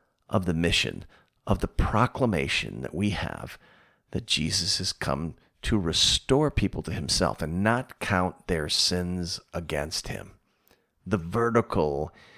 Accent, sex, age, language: American, male, 50-69, English